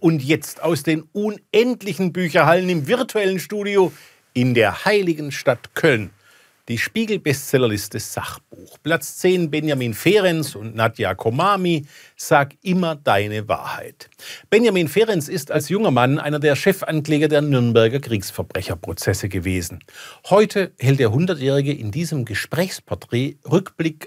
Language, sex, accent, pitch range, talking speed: German, male, German, 115-165 Hz, 120 wpm